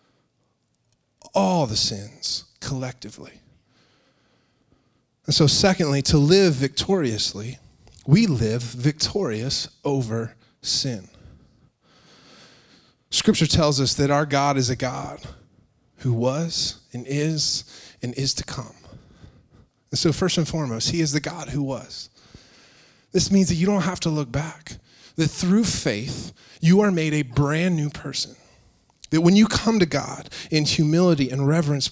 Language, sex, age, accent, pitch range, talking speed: English, male, 20-39, American, 125-170 Hz, 135 wpm